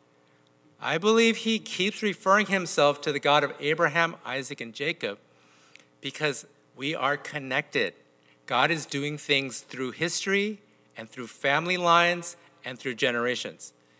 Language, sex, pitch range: English, male, 155-225 Hz